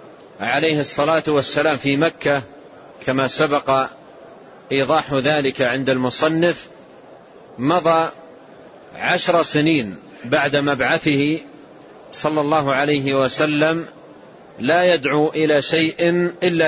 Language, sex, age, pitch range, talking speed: Arabic, male, 40-59, 140-165 Hz, 90 wpm